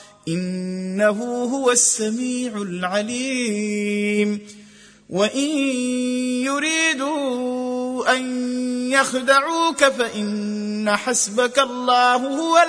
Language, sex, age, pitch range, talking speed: Arabic, male, 30-49, 210-260 Hz, 55 wpm